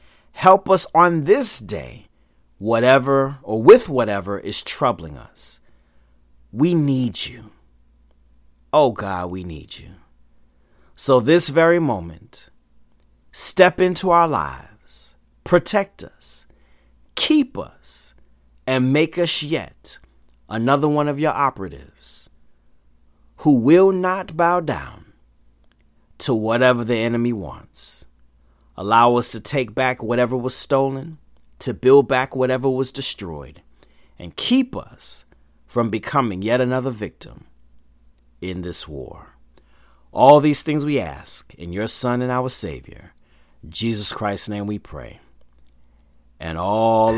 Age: 30-49